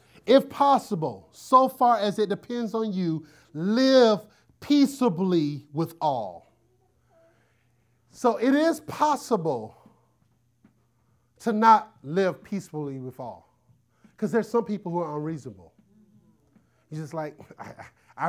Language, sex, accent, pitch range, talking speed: English, male, American, 150-220 Hz, 110 wpm